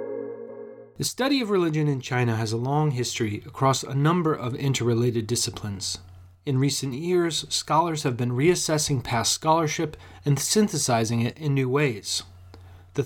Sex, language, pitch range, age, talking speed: male, English, 115-150 Hz, 30-49, 145 wpm